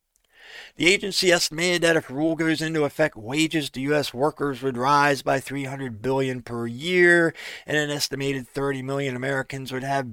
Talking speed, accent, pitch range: 170 wpm, American, 120-150 Hz